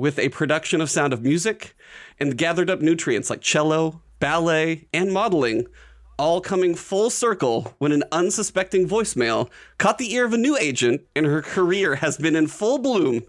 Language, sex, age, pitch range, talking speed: English, male, 30-49, 150-190 Hz, 175 wpm